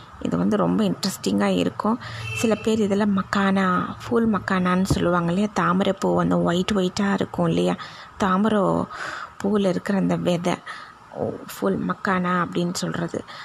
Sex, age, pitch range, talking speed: female, 20-39, 170-200 Hz, 125 wpm